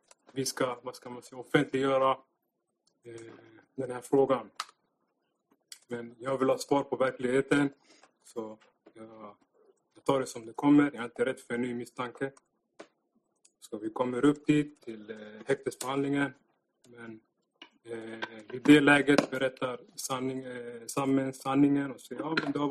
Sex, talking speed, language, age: male, 150 wpm, Swedish, 20-39